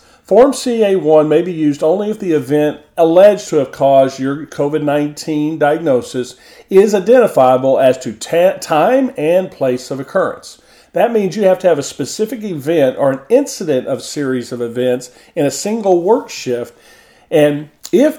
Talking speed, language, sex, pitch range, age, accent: 160 wpm, English, male, 135-185 Hz, 40-59, American